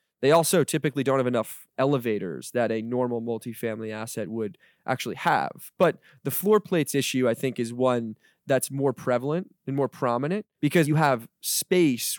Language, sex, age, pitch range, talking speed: English, male, 20-39, 120-145 Hz, 165 wpm